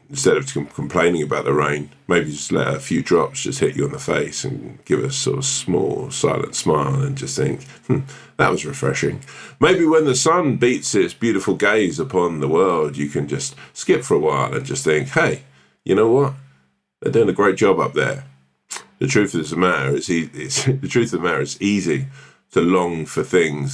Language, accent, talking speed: English, British, 195 wpm